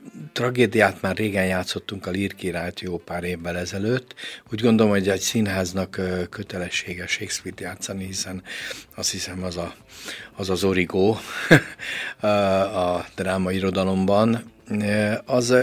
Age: 50-69